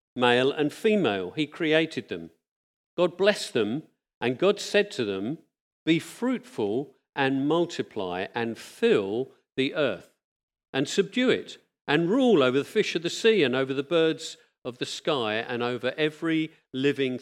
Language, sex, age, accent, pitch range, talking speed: English, male, 50-69, British, 125-170 Hz, 155 wpm